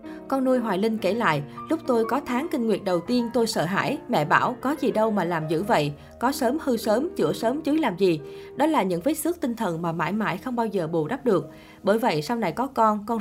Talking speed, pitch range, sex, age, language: 265 wpm, 185-250 Hz, female, 20-39, Vietnamese